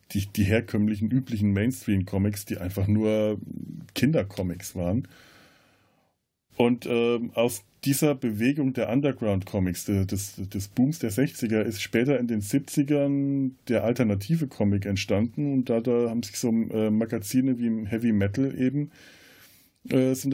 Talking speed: 135 wpm